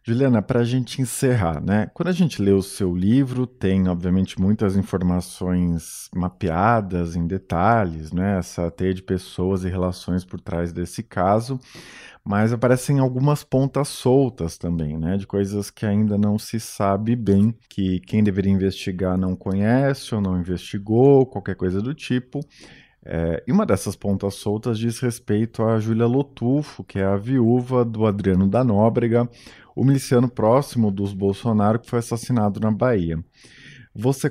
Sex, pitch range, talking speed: male, 95-125 Hz, 155 wpm